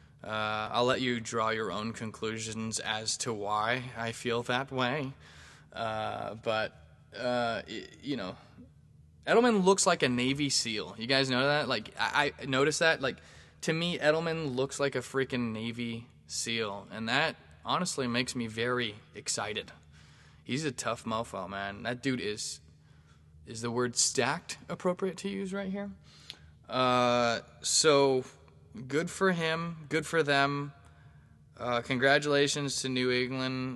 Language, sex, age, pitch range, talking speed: English, male, 20-39, 110-140 Hz, 145 wpm